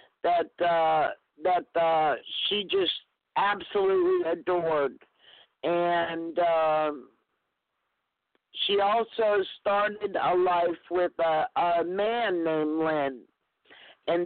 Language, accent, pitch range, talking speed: English, American, 165-200 Hz, 95 wpm